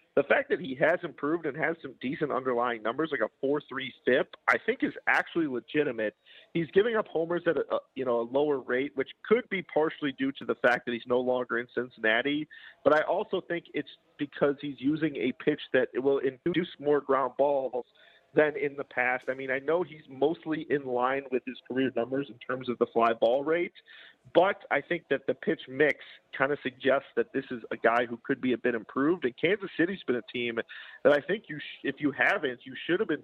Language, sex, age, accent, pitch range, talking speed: English, male, 40-59, American, 120-150 Hz, 225 wpm